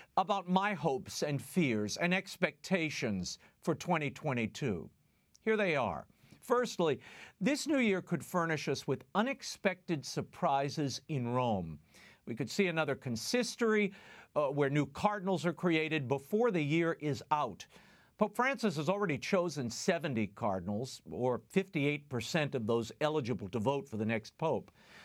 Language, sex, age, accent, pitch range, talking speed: English, male, 50-69, American, 140-200 Hz, 140 wpm